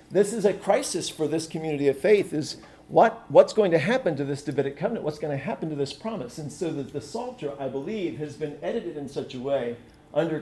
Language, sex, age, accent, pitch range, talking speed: English, male, 40-59, American, 145-180 Hz, 230 wpm